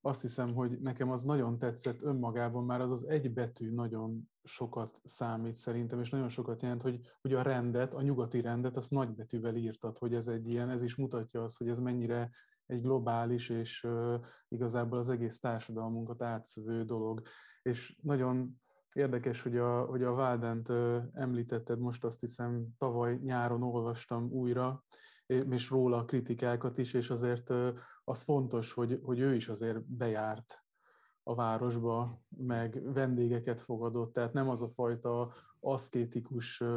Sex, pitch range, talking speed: male, 120-130 Hz, 160 wpm